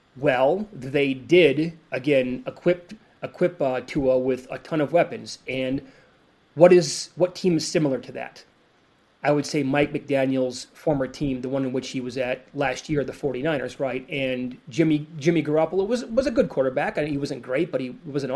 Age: 30-49